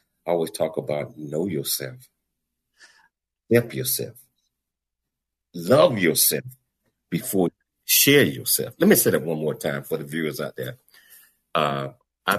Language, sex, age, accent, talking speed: English, male, 50-69, American, 130 wpm